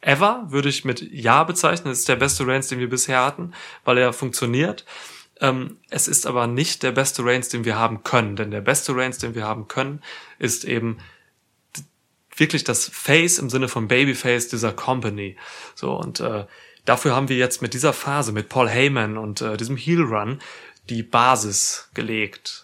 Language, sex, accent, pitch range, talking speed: German, male, German, 120-150 Hz, 185 wpm